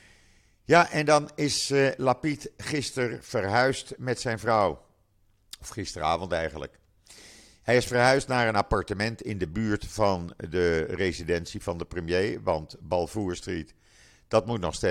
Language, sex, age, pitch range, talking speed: Dutch, male, 50-69, 85-110 Hz, 135 wpm